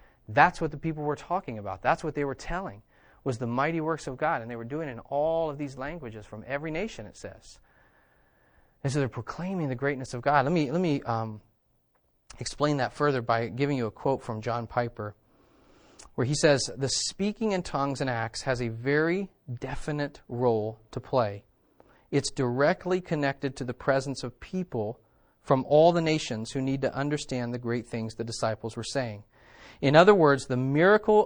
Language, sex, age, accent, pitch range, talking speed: English, male, 30-49, American, 125-165 Hz, 190 wpm